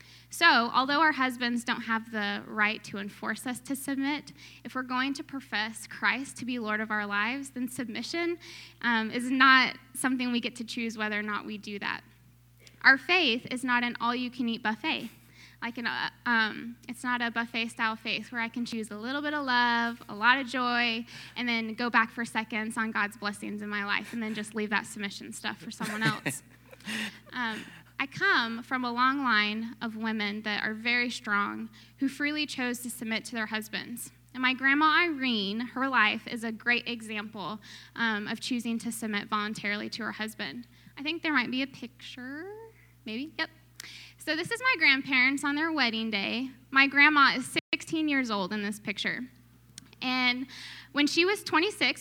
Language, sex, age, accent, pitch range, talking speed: English, female, 10-29, American, 220-265 Hz, 190 wpm